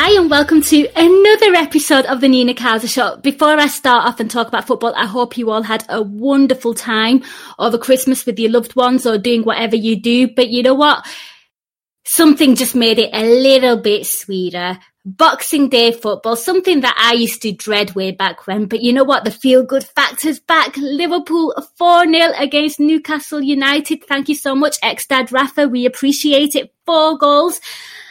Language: English